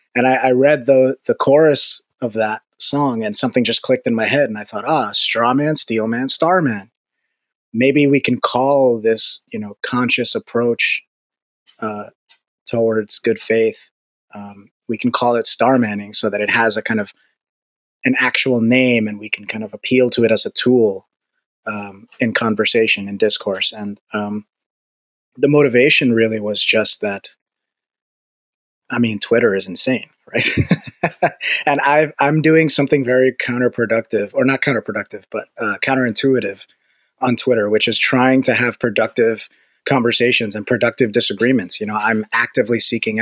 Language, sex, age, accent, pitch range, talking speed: English, male, 30-49, American, 105-130 Hz, 165 wpm